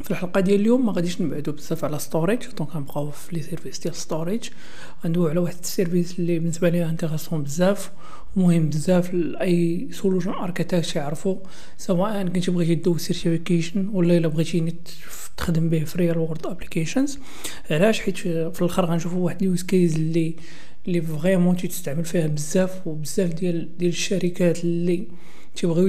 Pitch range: 165-190 Hz